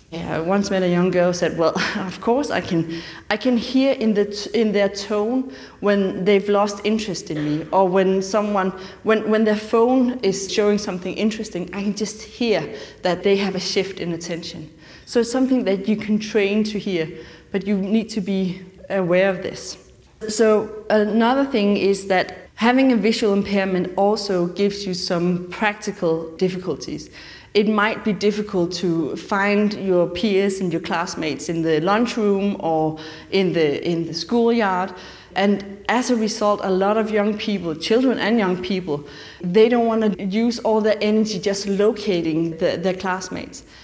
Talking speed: 175 wpm